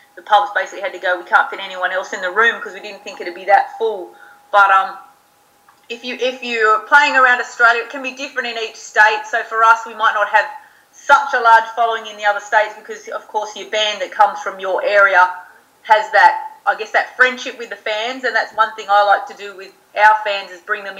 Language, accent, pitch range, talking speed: English, Australian, 200-250 Hz, 255 wpm